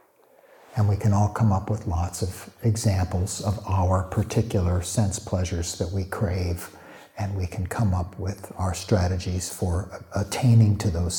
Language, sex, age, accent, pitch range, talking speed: English, male, 60-79, American, 95-115 Hz, 160 wpm